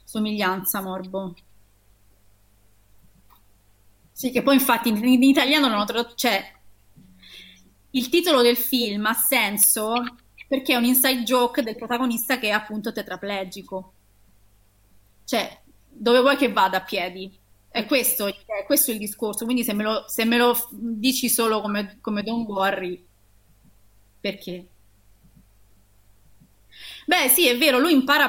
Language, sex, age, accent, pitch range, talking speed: Italian, female, 20-39, native, 190-245 Hz, 130 wpm